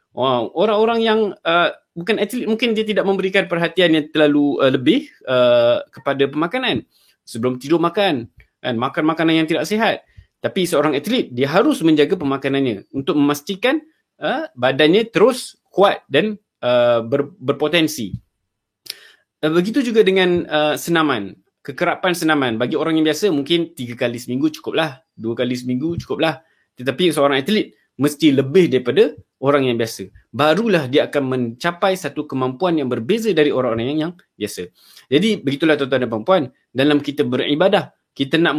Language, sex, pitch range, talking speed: Malay, male, 135-185 Hz, 150 wpm